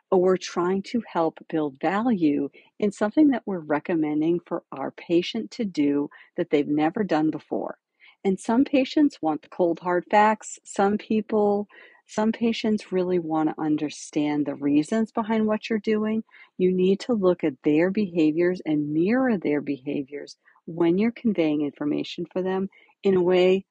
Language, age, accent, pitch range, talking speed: English, 50-69, American, 155-220 Hz, 160 wpm